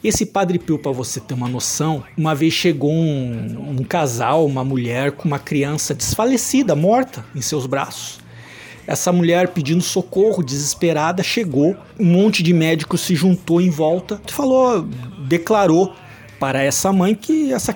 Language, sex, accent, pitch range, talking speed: Portuguese, male, Brazilian, 145-225 Hz, 150 wpm